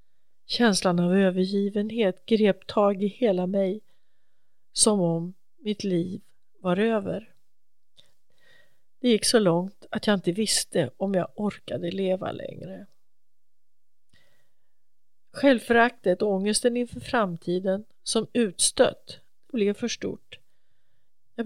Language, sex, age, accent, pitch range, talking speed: English, female, 40-59, Swedish, 180-225 Hz, 105 wpm